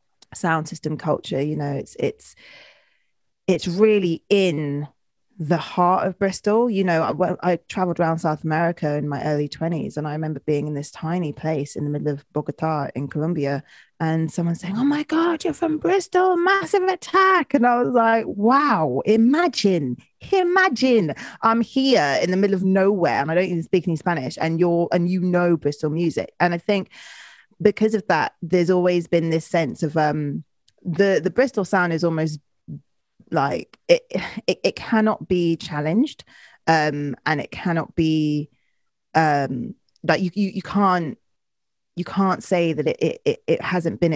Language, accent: English, British